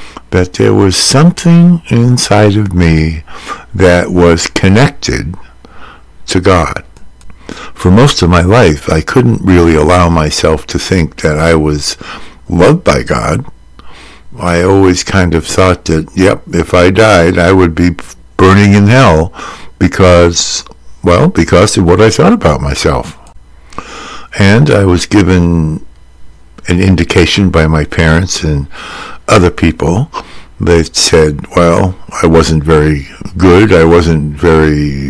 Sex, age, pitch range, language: male, 60-79, 80-95 Hz, English